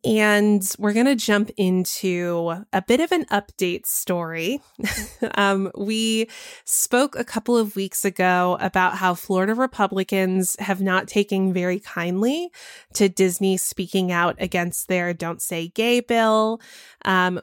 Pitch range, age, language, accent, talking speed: 185-215 Hz, 20-39, English, American, 140 wpm